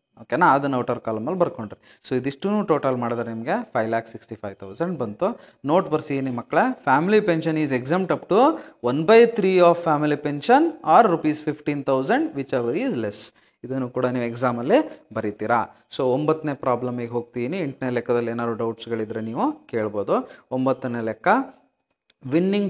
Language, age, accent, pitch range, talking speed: Kannada, 30-49, native, 125-165 Hz, 155 wpm